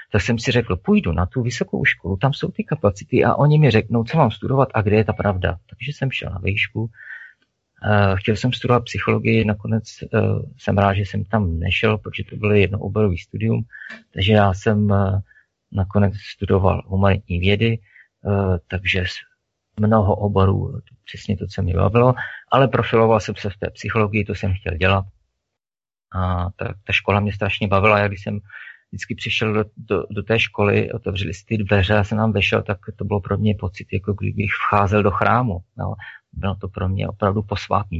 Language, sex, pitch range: Czech, male, 95-110 Hz